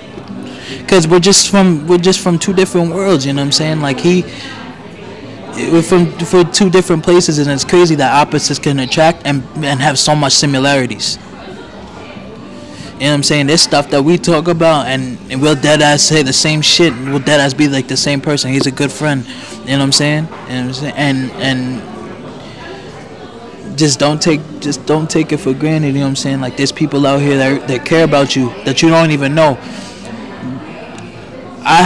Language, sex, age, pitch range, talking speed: English, male, 20-39, 135-155 Hz, 200 wpm